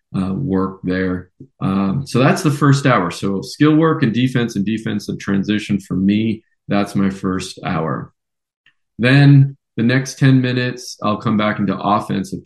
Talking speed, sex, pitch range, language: 160 wpm, male, 100-125 Hz, English